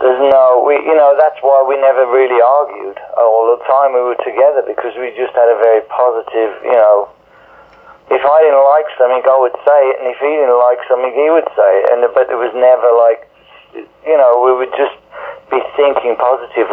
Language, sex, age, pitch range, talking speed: English, male, 40-59, 115-140 Hz, 210 wpm